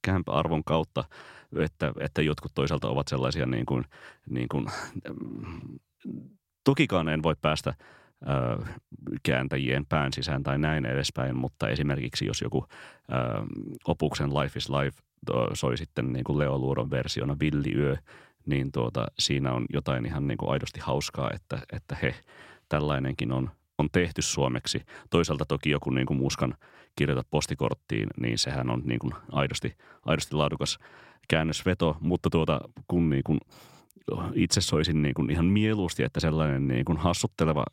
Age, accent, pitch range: 30-49, native, 65-75 Hz